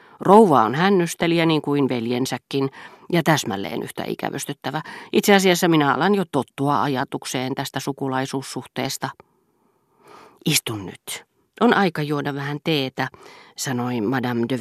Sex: female